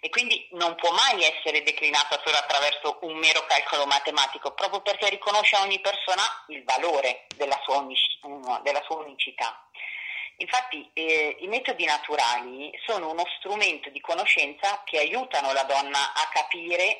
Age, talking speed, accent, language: 30-49, 140 wpm, native, Italian